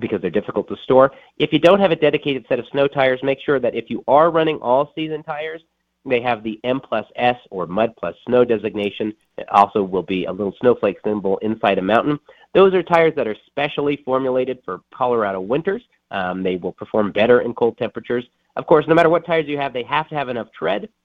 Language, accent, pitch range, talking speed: English, American, 105-145 Hz, 225 wpm